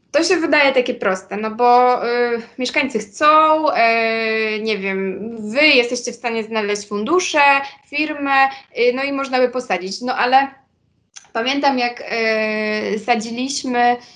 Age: 20-39